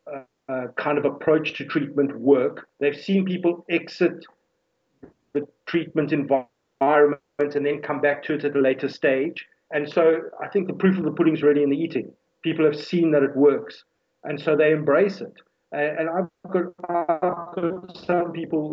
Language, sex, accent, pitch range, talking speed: English, male, South African, 140-165 Hz, 185 wpm